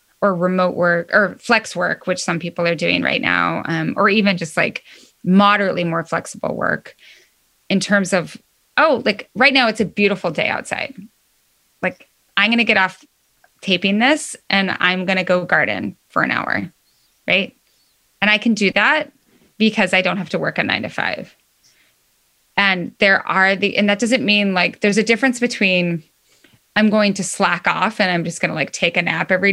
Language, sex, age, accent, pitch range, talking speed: English, female, 20-39, American, 180-230 Hz, 195 wpm